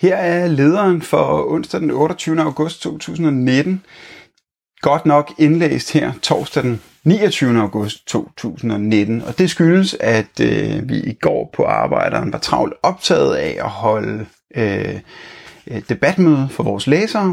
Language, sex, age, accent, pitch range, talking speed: Danish, male, 30-49, native, 110-155 Hz, 140 wpm